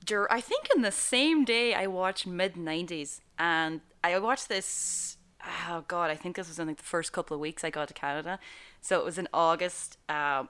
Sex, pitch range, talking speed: female, 155-210 Hz, 205 wpm